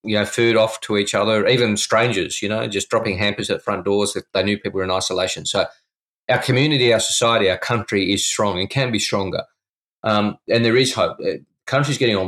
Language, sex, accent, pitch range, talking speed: English, male, Australian, 95-110 Hz, 220 wpm